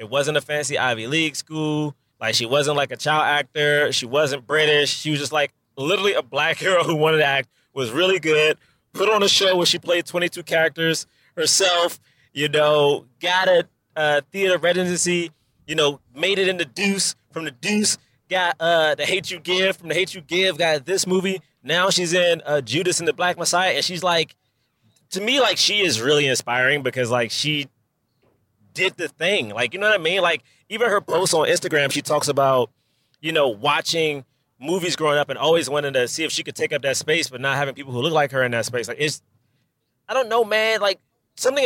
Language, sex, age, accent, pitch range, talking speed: English, male, 20-39, American, 140-180 Hz, 215 wpm